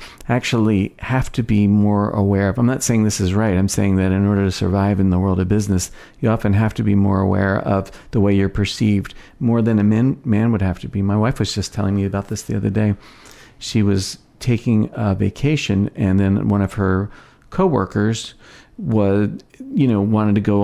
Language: English